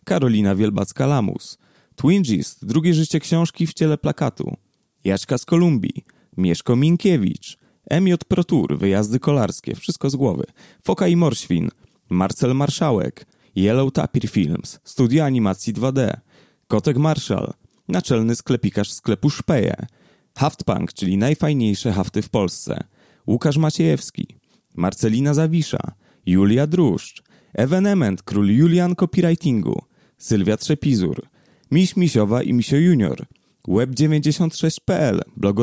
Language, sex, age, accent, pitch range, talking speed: Polish, male, 30-49, native, 110-160 Hz, 110 wpm